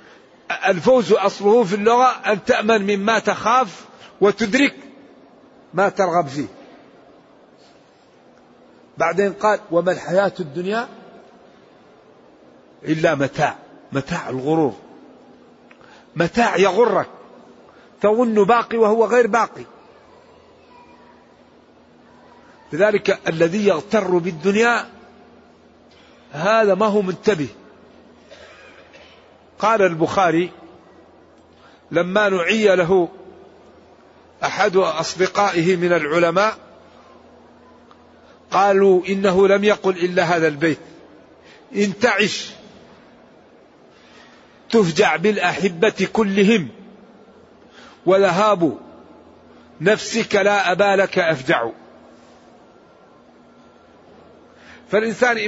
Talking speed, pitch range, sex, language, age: 65 wpm, 180-220 Hz, male, Arabic, 50-69